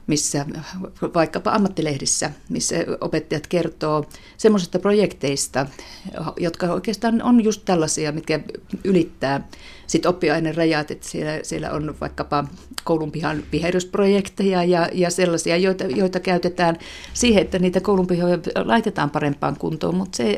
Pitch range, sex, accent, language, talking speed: 160-205 Hz, female, native, Finnish, 115 wpm